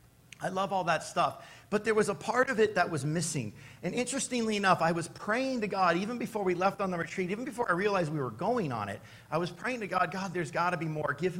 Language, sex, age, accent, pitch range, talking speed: English, male, 50-69, American, 140-190 Hz, 265 wpm